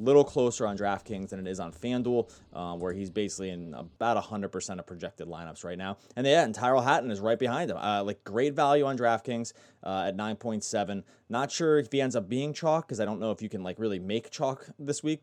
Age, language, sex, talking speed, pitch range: 20-39, English, male, 235 wpm, 100-130 Hz